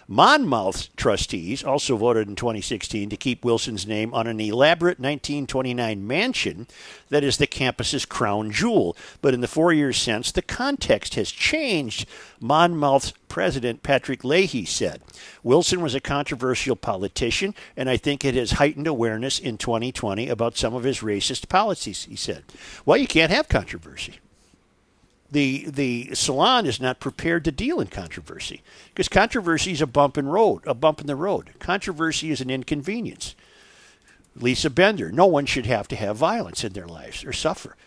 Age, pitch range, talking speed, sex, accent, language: 50-69, 125-195 Hz, 165 wpm, male, American, English